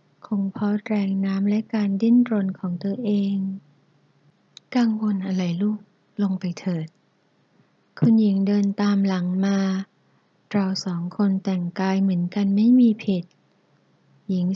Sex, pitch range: female, 180-210 Hz